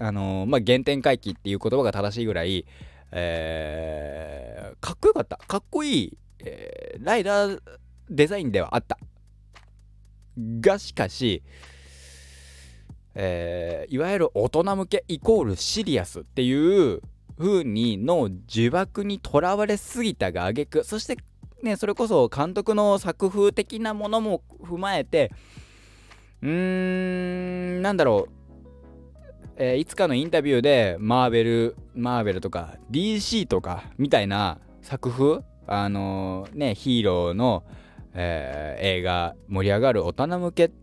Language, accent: Japanese, native